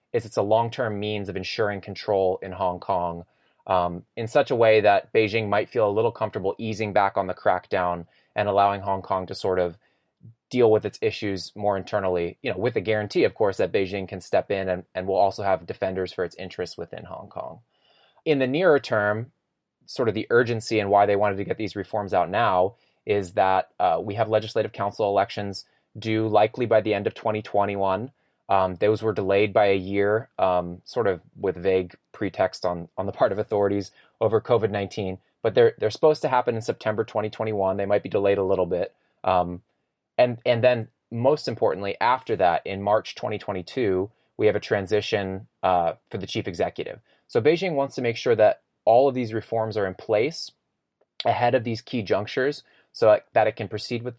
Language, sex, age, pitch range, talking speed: English, male, 20-39, 95-115 Hz, 200 wpm